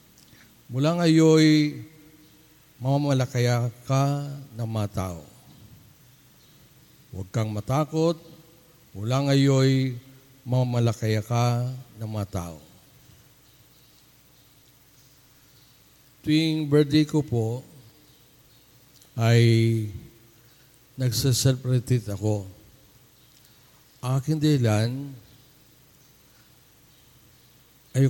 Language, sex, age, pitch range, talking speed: Filipino, male, 50-69, 115-140 Hz, 60 wpm